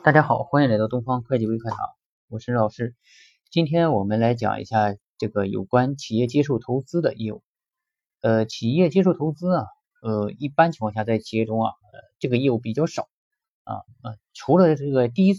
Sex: male